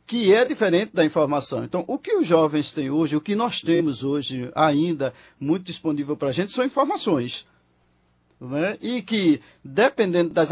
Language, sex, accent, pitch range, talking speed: Portuguese, male, Brazilian, 150-180 Hz, 170 wpm